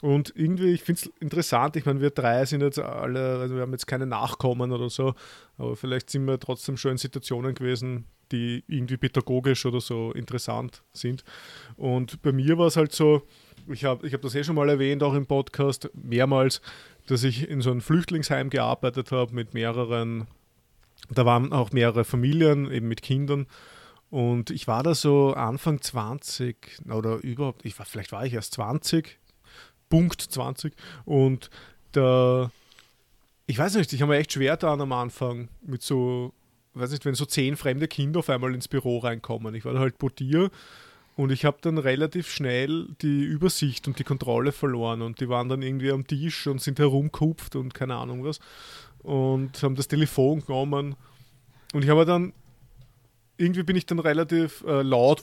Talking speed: 180 wpm